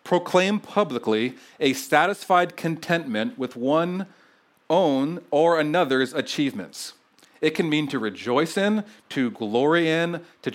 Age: 40-59